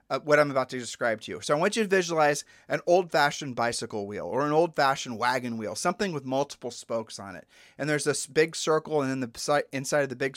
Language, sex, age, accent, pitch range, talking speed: English, male, 30-49, American, 135-170 Hz, 235 wpm